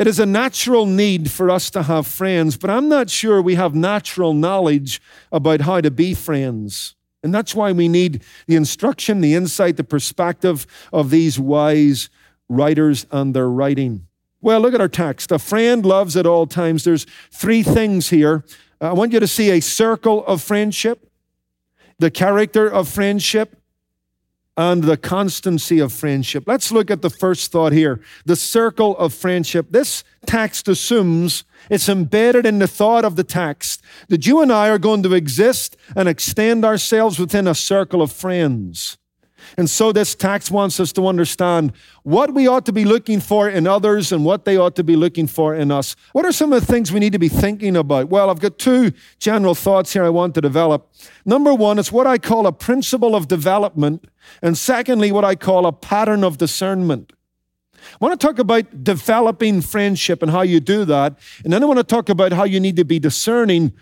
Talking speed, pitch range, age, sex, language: 195 wpm, 160-215 Hz, 50-69, male, English